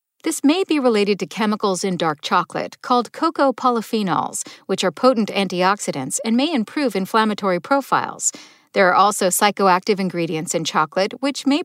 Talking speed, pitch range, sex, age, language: 155 wpm, 190-270 Hz, female, 50-69, English